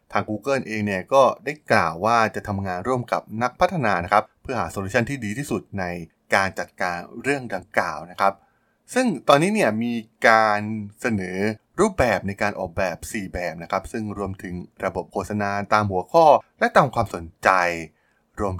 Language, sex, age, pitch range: Thai, male, 20-39, 90-120 Hz